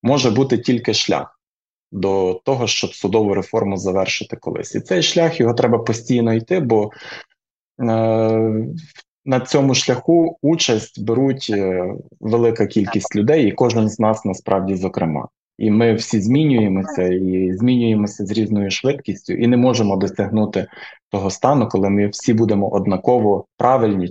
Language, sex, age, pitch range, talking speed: Ukrainian, male, 20-39, 100-120 Hz, 140 wpm